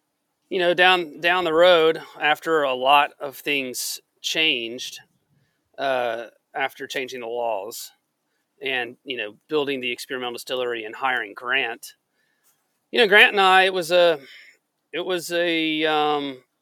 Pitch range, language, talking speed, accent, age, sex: 130-165 Hz, English, 140 wpm, American, 30-49, male